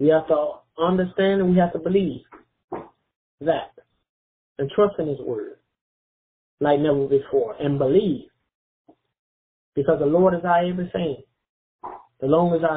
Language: English